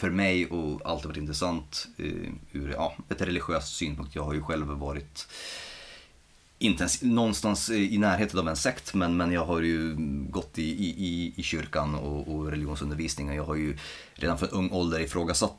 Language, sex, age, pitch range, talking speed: Swedish, male, 30-49, 75-95 Hz, 175 wpm